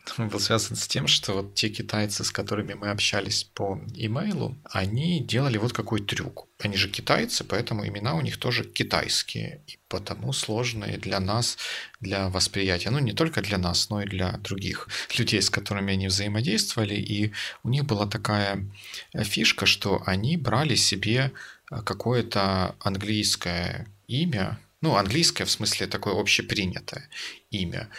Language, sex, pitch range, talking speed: English, male, 100-120 Hz, 150 wpm